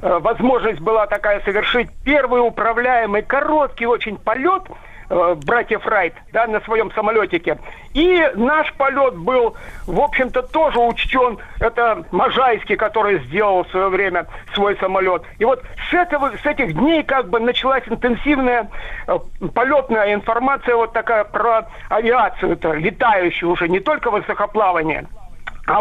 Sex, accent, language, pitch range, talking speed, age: male, native, Russian, 210-275 Hz, 130 wpm, 50-69